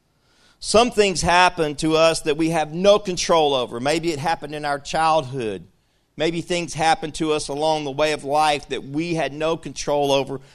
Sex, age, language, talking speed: male, 50-69, English, 190 wpm